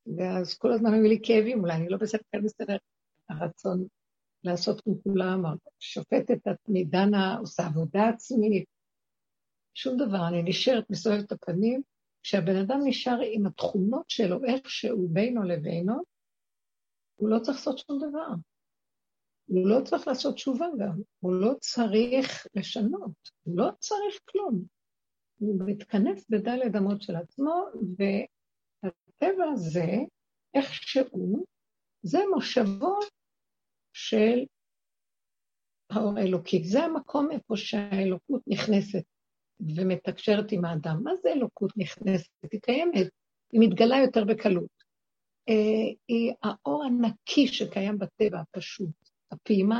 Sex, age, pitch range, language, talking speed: female, 60-79, 185-245 Hz, Hebrew, 120 wpm